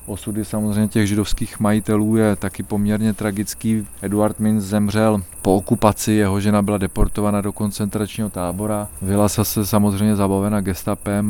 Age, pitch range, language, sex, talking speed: 20-39, 100-110 Hz, Slovak, male, 145 wpm